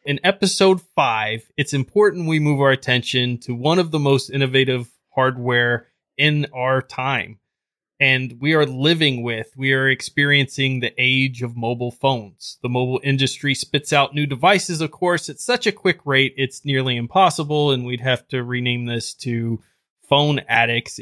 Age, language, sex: 20-39, English, male